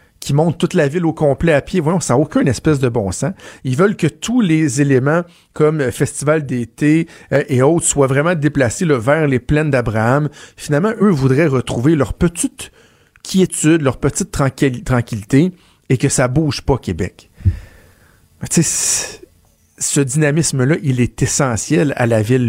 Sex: male